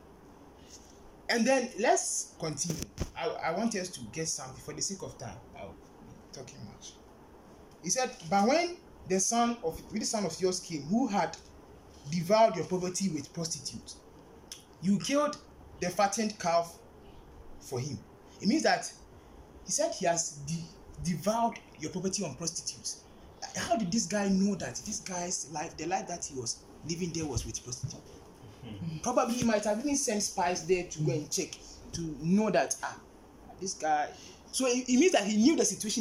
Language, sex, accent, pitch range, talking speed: English, male, Nigerian, 165-225 Hz, 170 wpm